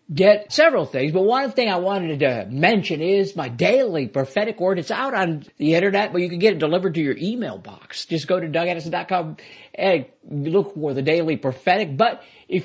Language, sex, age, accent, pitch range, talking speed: English, male, 50-69, American, 150-215 Hz, 200 wpm